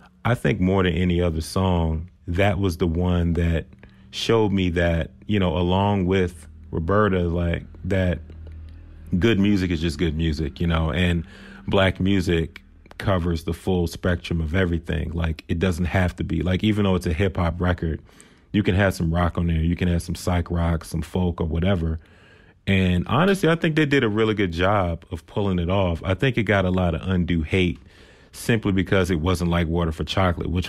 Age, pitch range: 30-49, 85-95 Hz